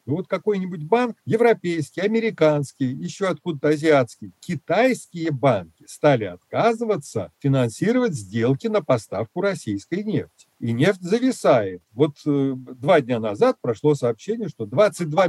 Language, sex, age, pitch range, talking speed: Russian, male, 50-69, 130-195 Hz, 115 wpm